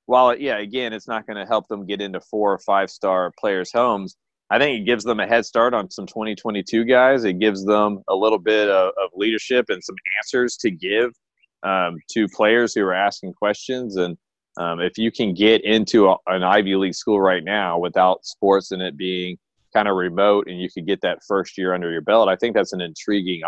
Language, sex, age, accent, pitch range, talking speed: English, male, 30-49, American, 90-110 Hz, 215 wpm